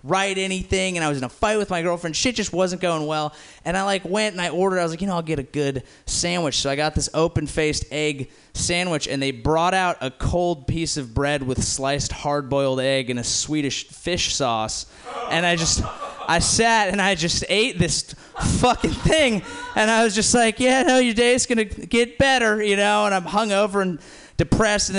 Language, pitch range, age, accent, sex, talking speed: English, 145-205 Hz, 20-39, American, male, 215 wpm